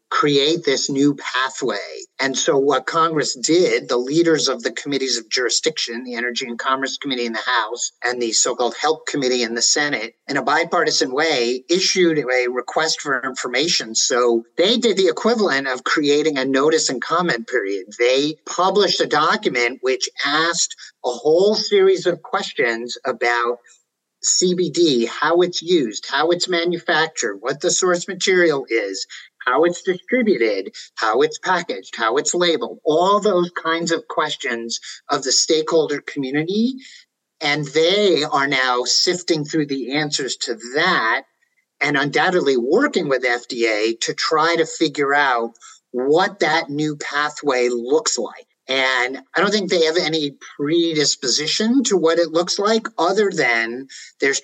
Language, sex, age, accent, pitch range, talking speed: English, male, 50-69, American, 130-180 Hz, 150 wpm